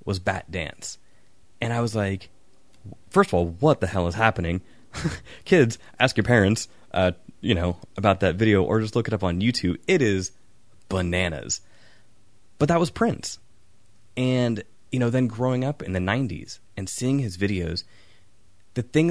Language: English